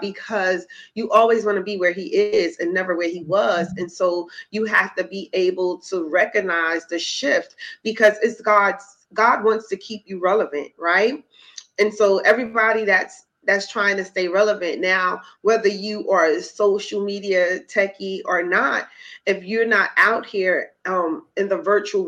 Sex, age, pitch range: female, 30-49, 185-220 Hz